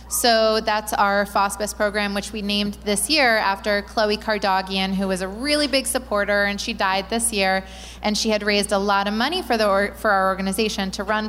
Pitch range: 190-225 Hz